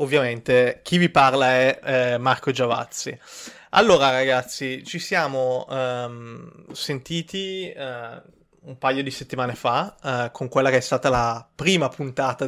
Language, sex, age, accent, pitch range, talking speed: Italian, male, 20-39, native, 120-140 Hz, 125 wpm